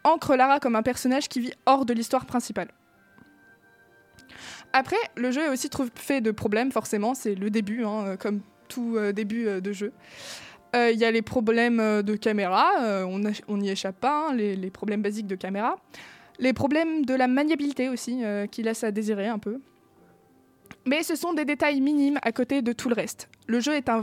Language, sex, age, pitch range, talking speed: French, female, 20-39, 220-275 Hz, 205 wpm